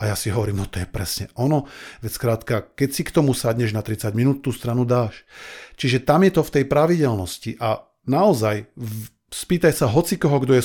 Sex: male